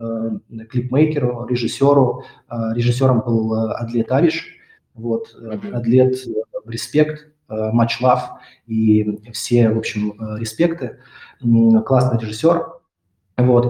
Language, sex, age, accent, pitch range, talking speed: Russian, male, 20-39, native, 115-145 Hz, 85 wpm